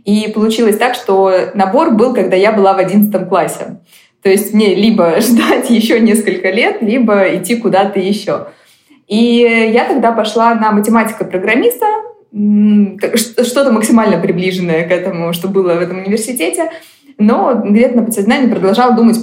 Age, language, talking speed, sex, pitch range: 20-39, Russian, 145 wpm, female, 185-235 Hz